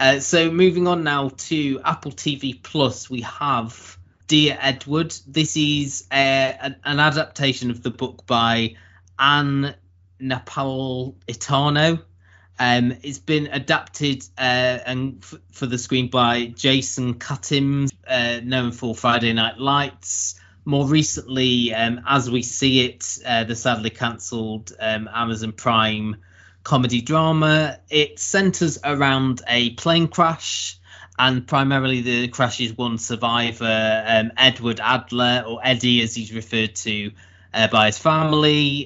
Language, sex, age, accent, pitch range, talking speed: English, male, 20-39, British, 115-140 Hz, 135 wpm